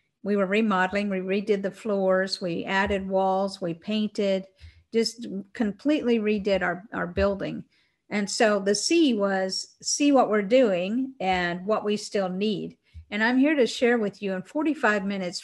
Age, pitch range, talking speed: 50-69, 190-230 Hz, 165 wpm